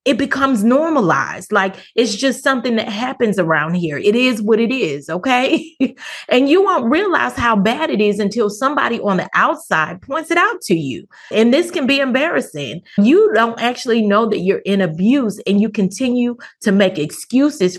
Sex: female